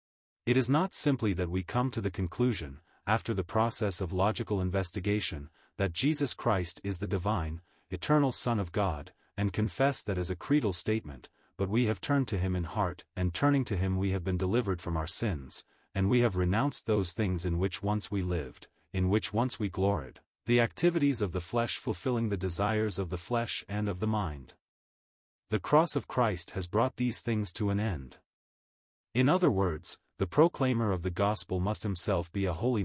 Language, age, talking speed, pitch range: English, 40-59, 195 wpm, 90-120 Hz